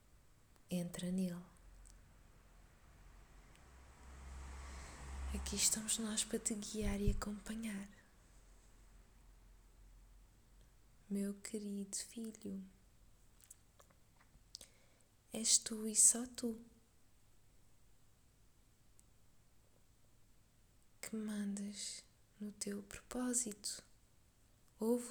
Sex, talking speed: female, 55 wpm